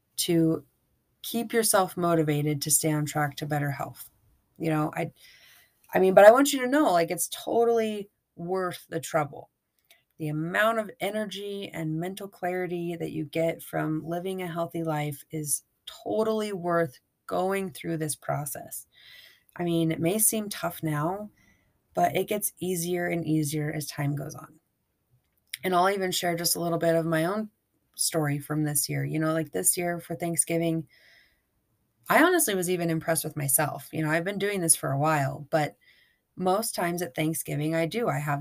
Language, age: English, 30-49